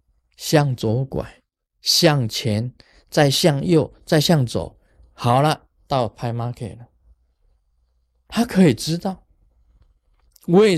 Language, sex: Chinese, male